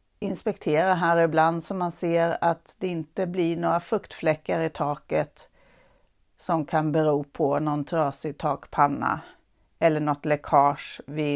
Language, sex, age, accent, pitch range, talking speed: Swedish, female, 40-59, native, 155-185 Hz, 130 wpm